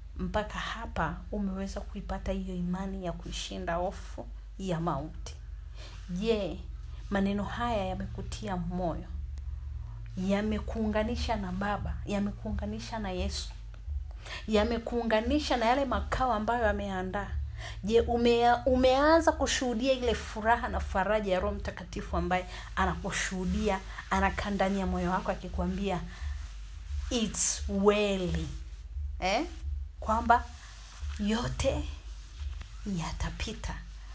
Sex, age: female, 40-59